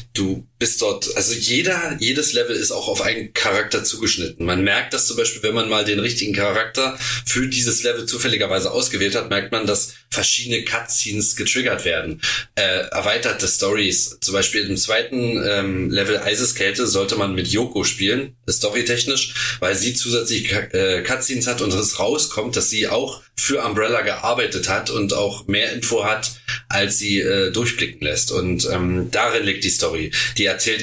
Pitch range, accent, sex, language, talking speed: 100-125 Hz, German, male, German, 175 wpm